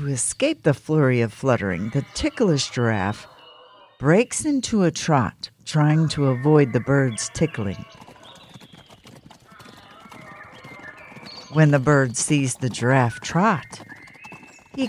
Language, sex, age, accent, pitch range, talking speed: English, female, 60-79, American, 120-160 Hz, 110 wpm